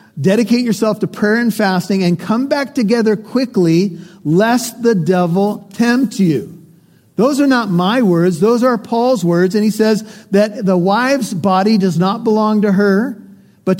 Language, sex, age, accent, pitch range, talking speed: English, male, 50-69, American, 175-225 Hz, 165 wpm